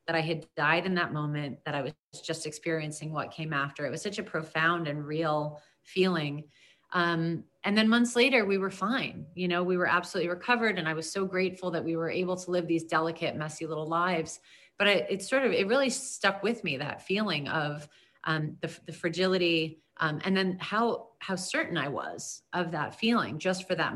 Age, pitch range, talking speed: 30-49, 160-185 Hz, 210 wpm